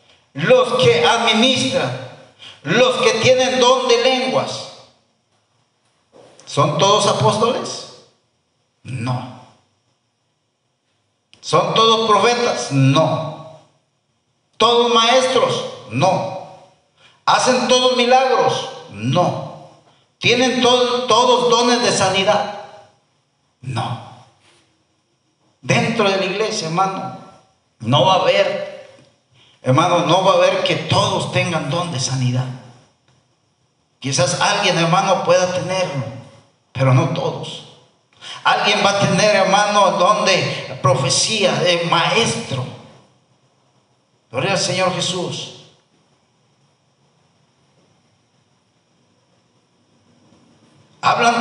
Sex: male